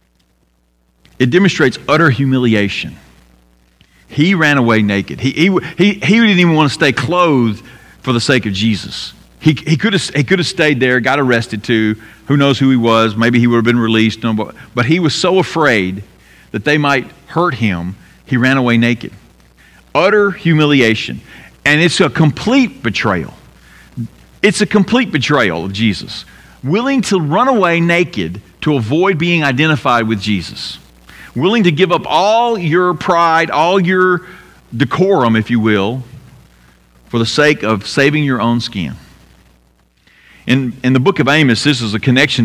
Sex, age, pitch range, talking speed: male, 50-69, 105-155 Hz, 160 wpm